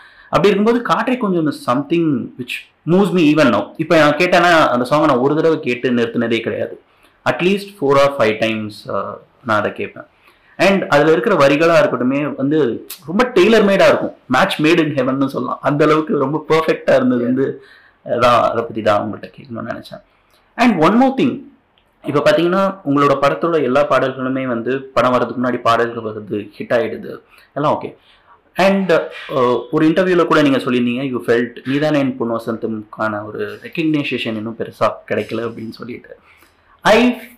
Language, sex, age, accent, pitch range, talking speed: Tamil, male, 30-49, native, 125-180 Hz, 155 wpm